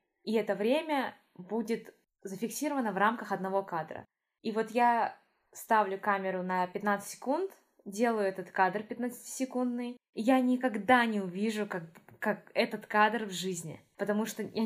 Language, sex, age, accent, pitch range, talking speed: Russian, female, 20-39, native, 190-235 Hz, 140 wpm